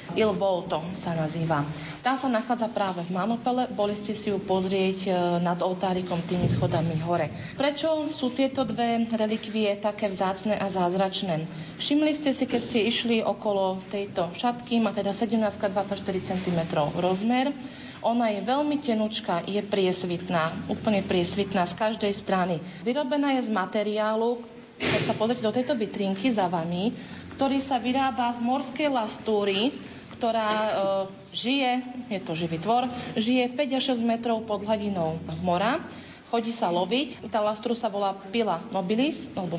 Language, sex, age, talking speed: Slovak, female, 30-49, 145 wpm